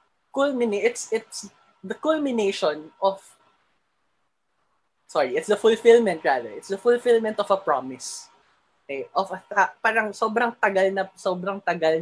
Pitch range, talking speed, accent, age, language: 160-220 Hz, 130 wpm, Filipino, 20-39, English